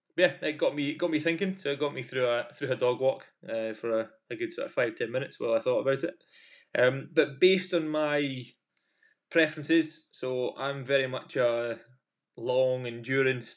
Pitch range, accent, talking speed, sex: 120-165 Hz, British, 200 wpm, male